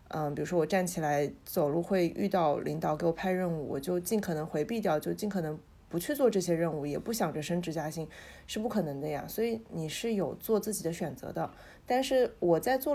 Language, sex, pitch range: Chinese, female, 160-220 Hz